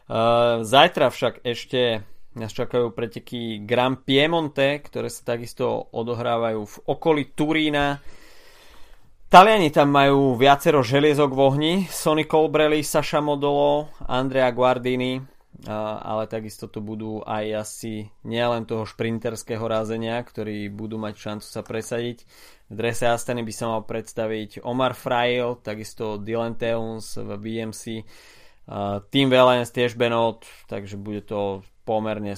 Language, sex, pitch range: Slovak, male, 110-130 Hz